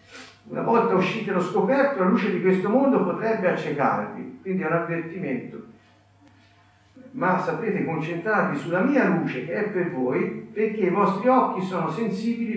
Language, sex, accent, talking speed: Italian, male, native, 155 wpm